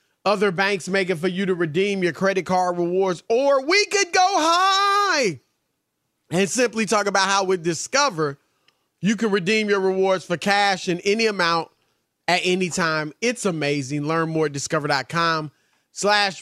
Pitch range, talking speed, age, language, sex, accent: 175-215 Hz, 160 wpm, 30-49, English, male, American